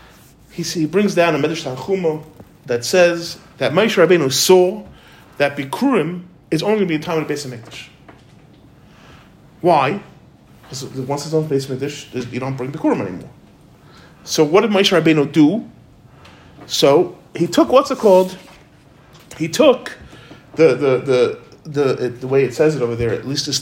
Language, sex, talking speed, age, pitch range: English, male, 170 wpm, 30-49, 140-185 Hz